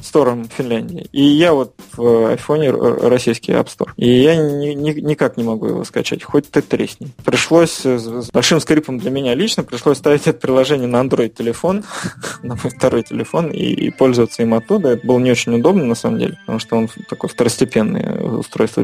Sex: male